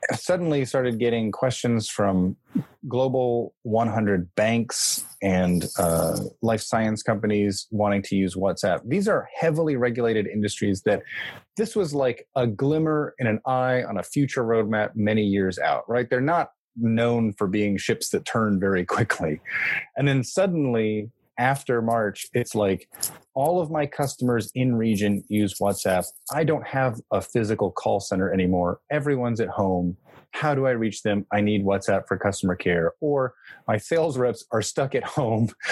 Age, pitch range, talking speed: 30-49, 105-130 Hz, 160 wpm